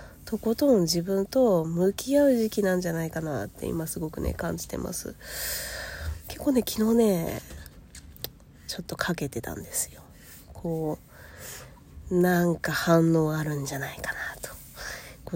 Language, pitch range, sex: Japanese, 135-180 Hz, female